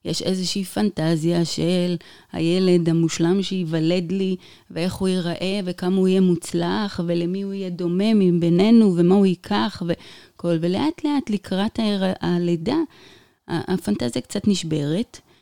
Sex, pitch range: female, 170-205 Hz